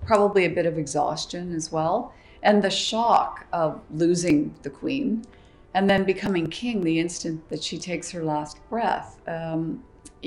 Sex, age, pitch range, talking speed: female, 50-69, 160-190 Hz, 160 wpm